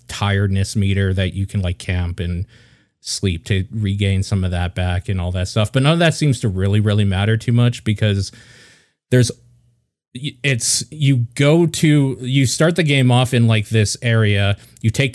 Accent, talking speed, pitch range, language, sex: American, 185 wpm, 100-120 Hz, English, male